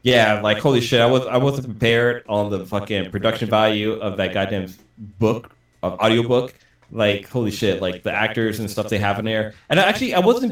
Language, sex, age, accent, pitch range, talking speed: English, male, 20-39, American, 105-140 Hz, 205 wpm